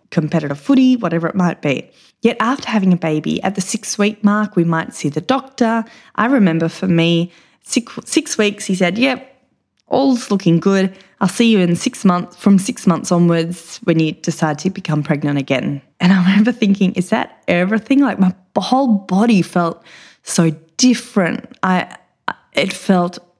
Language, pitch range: English, 175-235 Hz